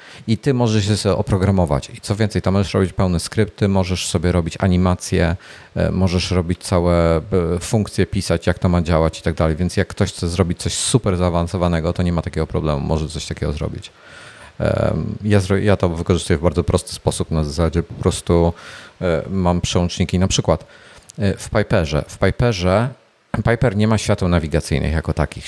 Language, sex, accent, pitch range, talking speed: Polish, male, native, 85-100 Hz, 165 wpm